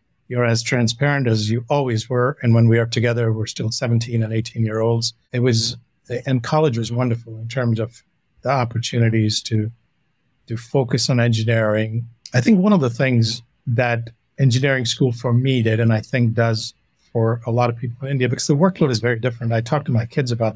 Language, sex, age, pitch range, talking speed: English, male, 50-69, 115-135 Hz, 205 wpm